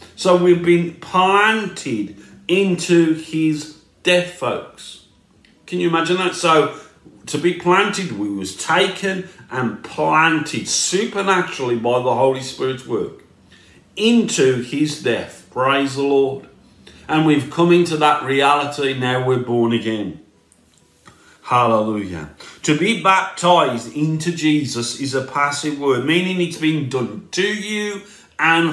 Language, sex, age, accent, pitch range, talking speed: English, male, 50-69, British, 120-175 Hz, 125 wpm